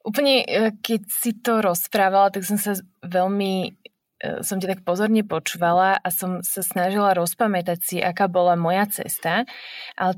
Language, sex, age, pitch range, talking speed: Slovak, female, 20-39, 175-225 Hz, 145 wpm